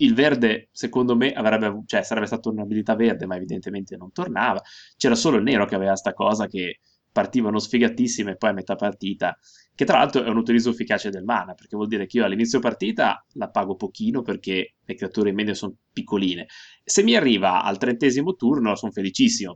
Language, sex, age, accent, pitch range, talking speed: Italian, male, 20-39, native, 105-130 Hz, 195 wpm